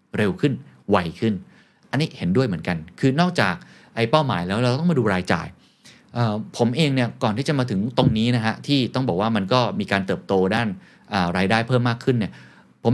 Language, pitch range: Thai, 95-130 Hz